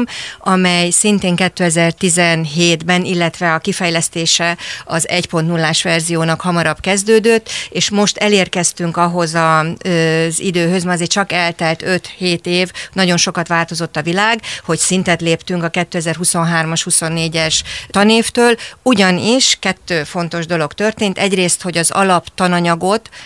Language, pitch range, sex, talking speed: Hungarian, 165-190 Hz, female, 115 wpm